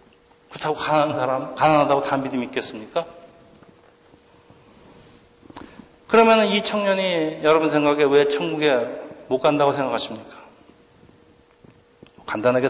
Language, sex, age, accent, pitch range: Korean, male, 40-59, native, 115-150 Hz